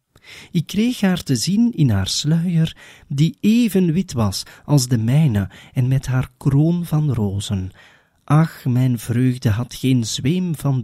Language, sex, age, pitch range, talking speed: Dutch, male, 40-59, 105-155 Hz, 155 wpm